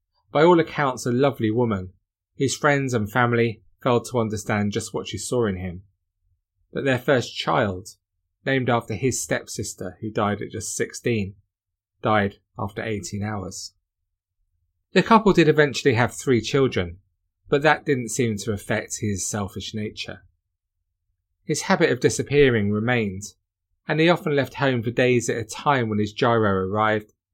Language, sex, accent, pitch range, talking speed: English, male, British, 100-130 Hz, 155 wpm